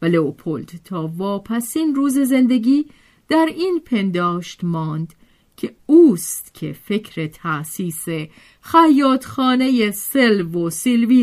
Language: Persian